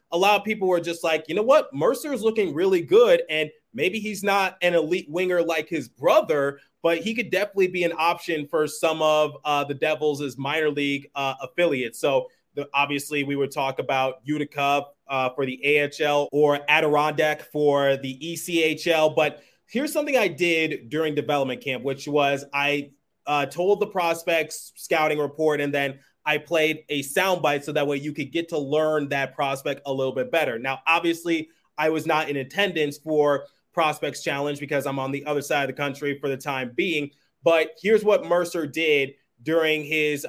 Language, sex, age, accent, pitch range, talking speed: English, male, 30-49, American, 140-165 Hz, 185 wpm